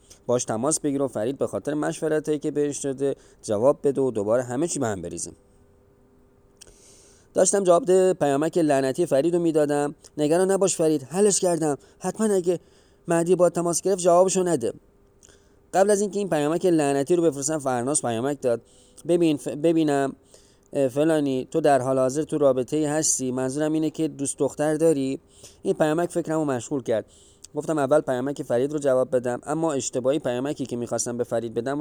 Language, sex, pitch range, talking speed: Persian, male, 120-160 Hz, 170 wpm